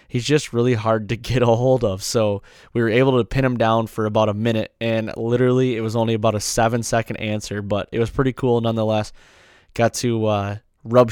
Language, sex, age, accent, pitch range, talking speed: English, male, 20-39, American, 105-120 Hz, 220 wpm